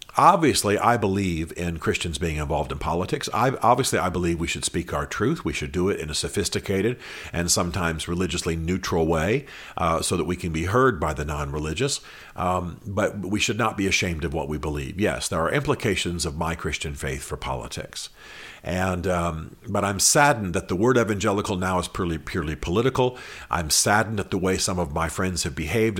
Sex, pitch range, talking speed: male, 80-100 Hz, 195 wpm